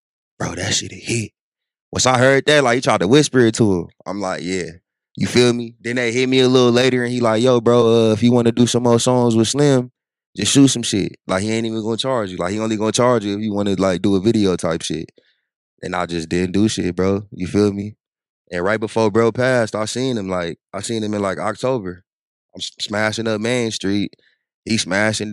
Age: 20-39